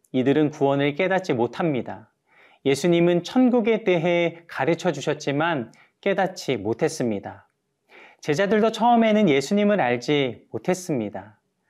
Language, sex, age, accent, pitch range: Korean, male, 40-59, native, 140-190 Hz